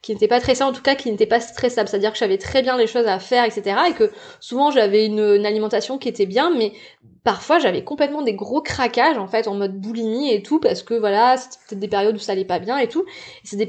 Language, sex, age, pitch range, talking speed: French, female, 20-39, 210-265 Hz, 270 wpm